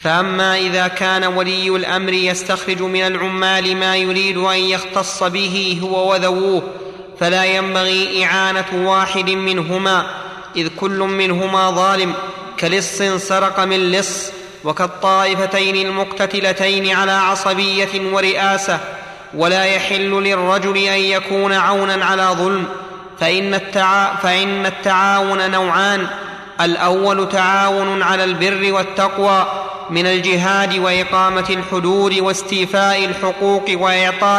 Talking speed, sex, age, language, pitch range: 100 wpm, male, 30-49, Arabic, 190-200 Hz